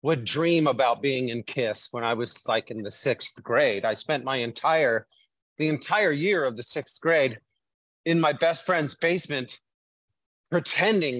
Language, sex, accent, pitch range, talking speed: English, male, American, 125-165 Hz, 165 wpm